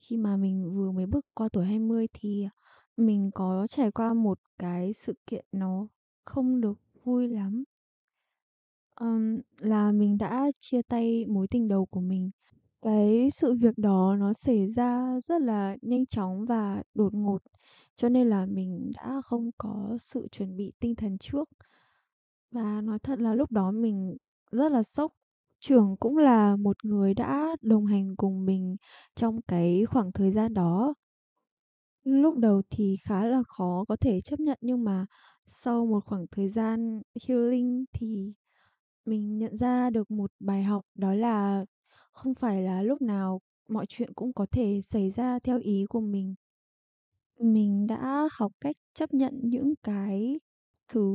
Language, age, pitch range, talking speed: Vietnamese, 10-29, 200-245 Hz, 165 wpm